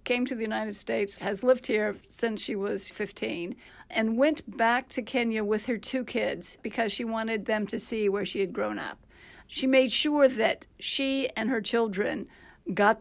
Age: 50-69